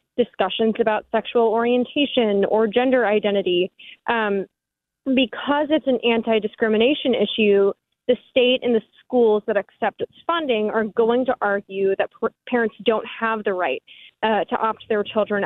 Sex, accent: female, American